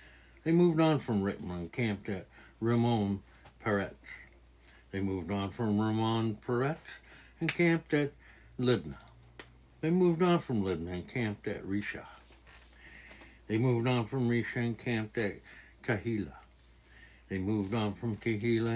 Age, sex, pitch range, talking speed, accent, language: 60-79, male, 85-135 Hz, 140 wpm, American, English